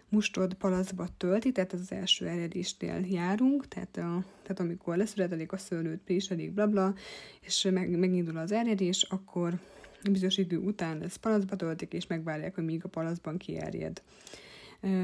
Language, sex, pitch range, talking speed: Hungarian, female, 170-195 Hz, 150 wpm